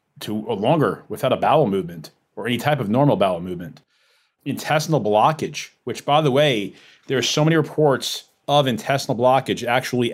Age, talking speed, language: 30-49, 165 wpm, English